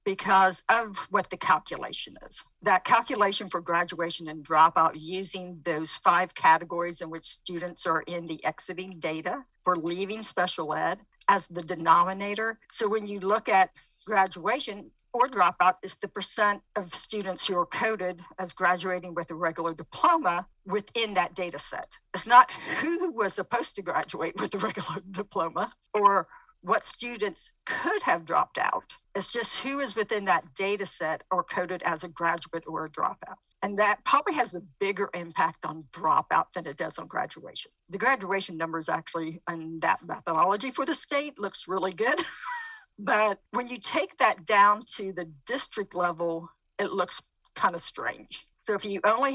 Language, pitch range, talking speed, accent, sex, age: English, 175-215 Hz, 165 wpm, American, female, 50-69